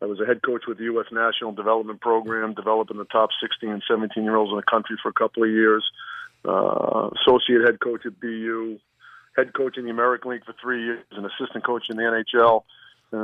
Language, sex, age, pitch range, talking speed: English, male, 40-59, 110-125 Hz, 220 wpm